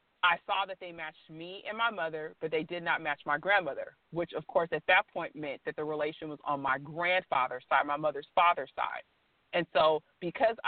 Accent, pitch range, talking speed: American, 160-195 Hz, 215 wpm